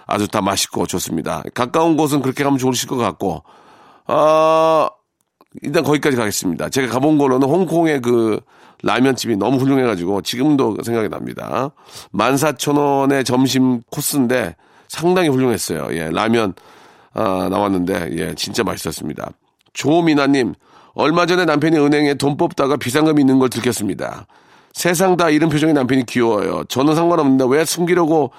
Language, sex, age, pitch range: Korean, male, 40-59, 110-150 Hz